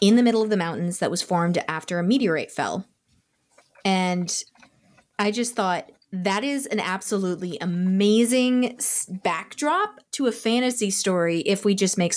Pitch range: 180-220 Hz